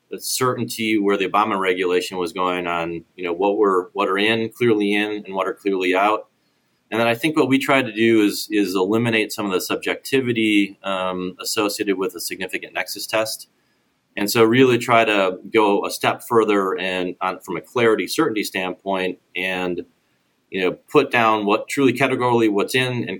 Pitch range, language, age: 95-115 Hz, English, 30-49